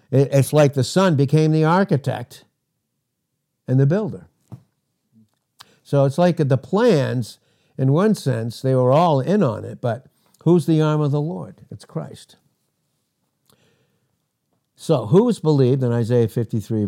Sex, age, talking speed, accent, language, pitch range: male, 60-79, 140 wpm, American, English, 115-155 Hz